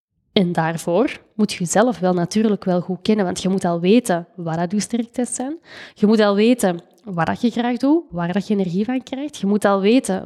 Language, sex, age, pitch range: Dutch, female, 20-39, 190-230 Hz